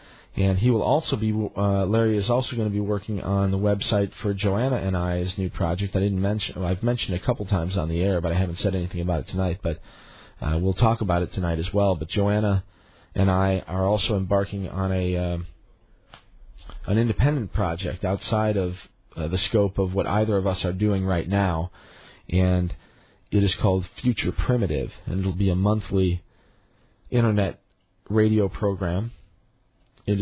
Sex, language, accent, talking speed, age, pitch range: male, English, American, 185 wpm, 40-59, 90-110 Hz